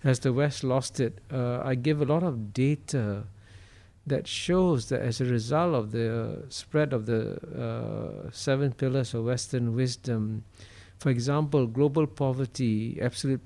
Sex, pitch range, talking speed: male, 115-135 Hz, 150 wpm